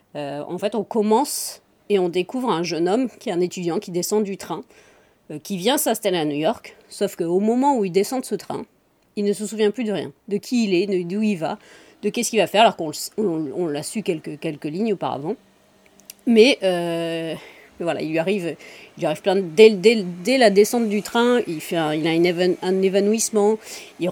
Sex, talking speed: female, 235 wpm